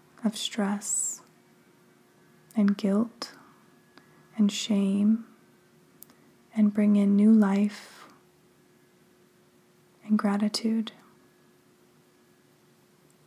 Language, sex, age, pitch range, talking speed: English, female, 20-39, 200-225 Hz, 60 wpm